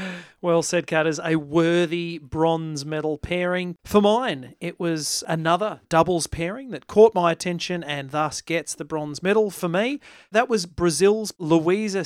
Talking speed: 155 wpm